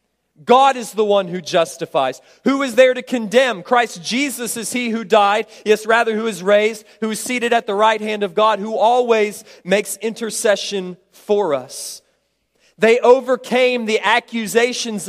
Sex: male